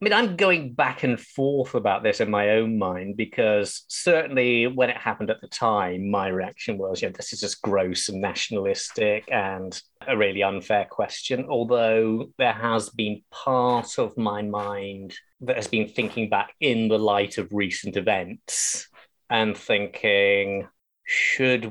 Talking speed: 165 wpm